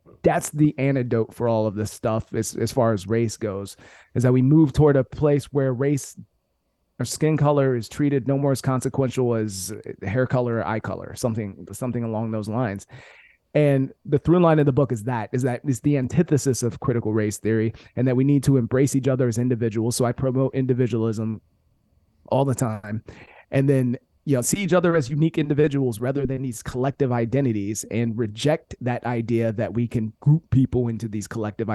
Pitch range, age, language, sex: 110-140 Hz, 30-49, English, male